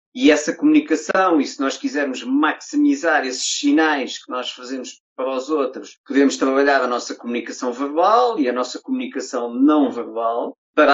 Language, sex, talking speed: Portuguese, male, 160 wpm